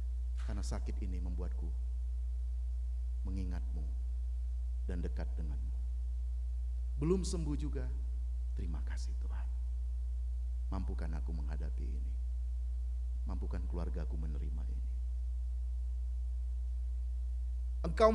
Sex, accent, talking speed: male, native, 75 wpm